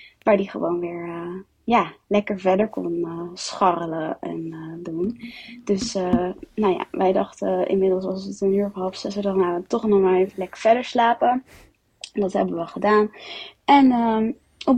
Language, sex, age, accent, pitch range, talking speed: Dutch, female, 20-39, Dutch, 195-245 Hz, 160 wpm